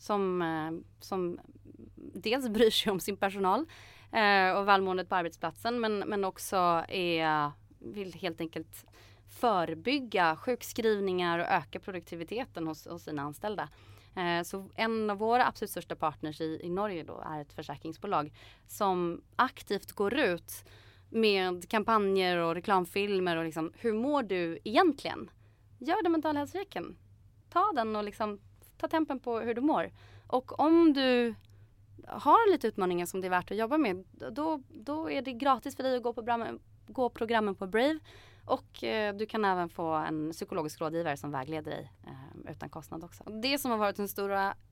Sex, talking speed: female, 155 wpm